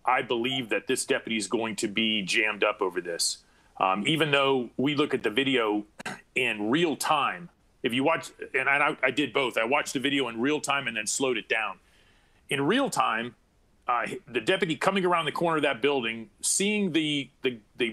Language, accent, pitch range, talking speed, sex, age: English, American, 130-170 Hz, 205 wpm, male, 40-59